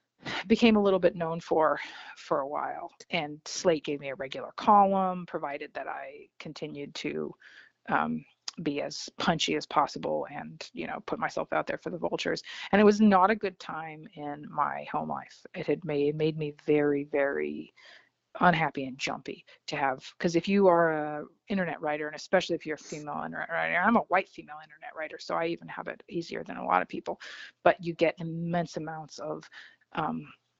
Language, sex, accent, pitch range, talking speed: English, female, American, 150-185 Hz, 195 wpm